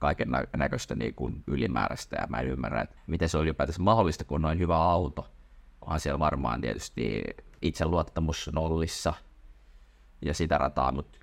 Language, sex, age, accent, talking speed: Finnish, male, 20-39, native, 170 wpm